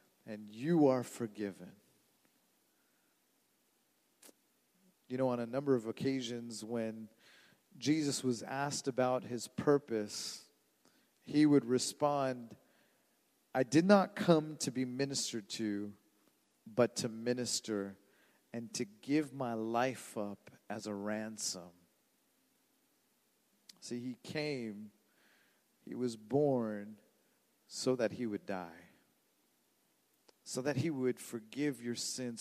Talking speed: 110 wpm